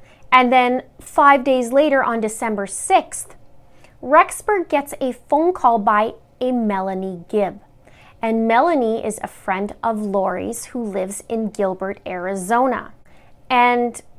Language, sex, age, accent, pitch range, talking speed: English, female, 30-49, American, 205-255 Hz, 125 wpm